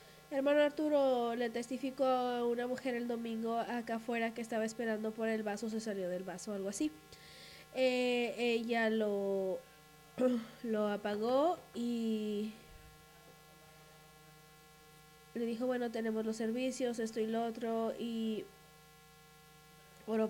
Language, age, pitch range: English, 20-39, 160-250 Hz